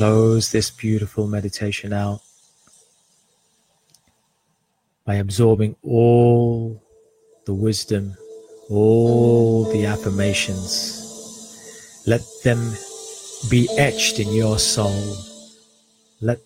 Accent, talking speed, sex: British, 75 wpm, male